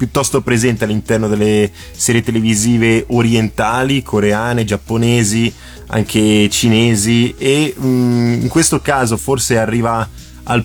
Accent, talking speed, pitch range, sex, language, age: native, 100 wpm, 110-125 Hz, male, Italian, 20-39